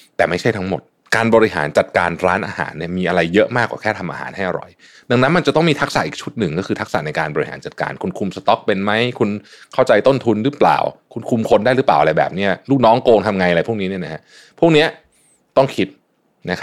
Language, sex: Thai, male